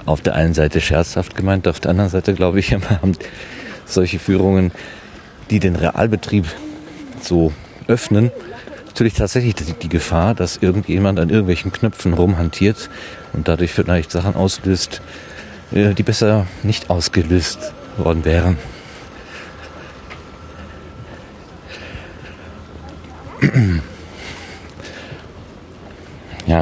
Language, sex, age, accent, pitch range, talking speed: German, male, 40-59, German, 85-105 Hz, 95 wpm